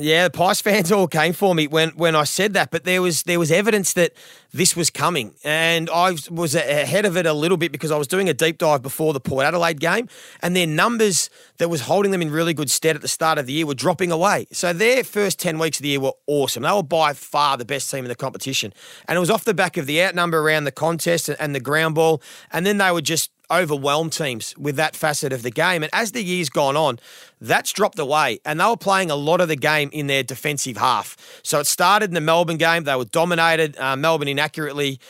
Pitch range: 145-175 Hz